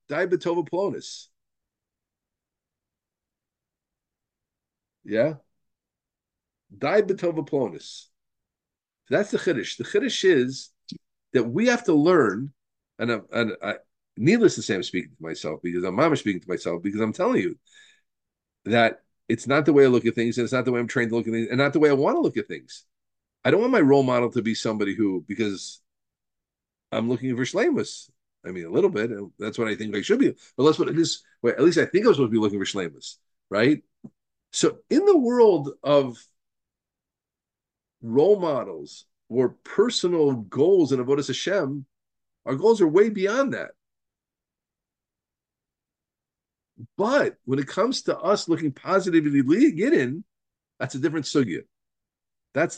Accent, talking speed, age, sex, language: American, 170 wpm, 50-69, male, English